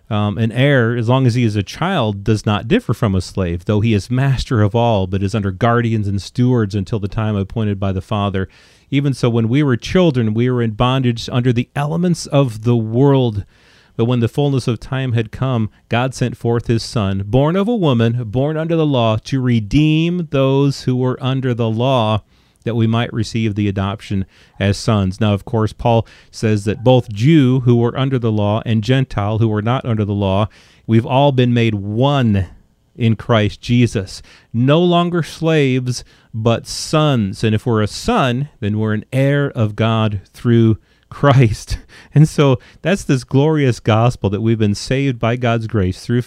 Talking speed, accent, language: 195 wpm, American, English